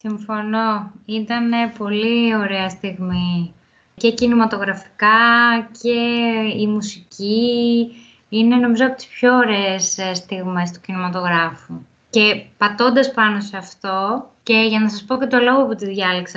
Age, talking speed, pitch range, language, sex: 20-39, 130 wpm, 210-265 Hz, Greek, female